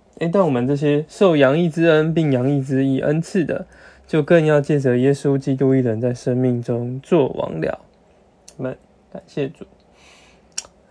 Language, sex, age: Chinese, male, 20-39